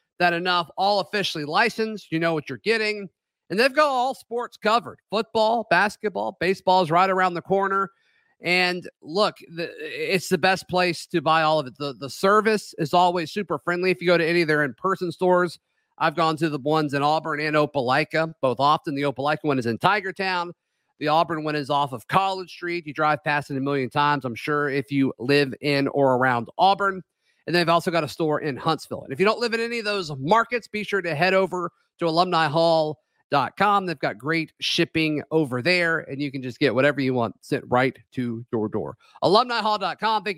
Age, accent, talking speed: 40-59, American, 205 wpm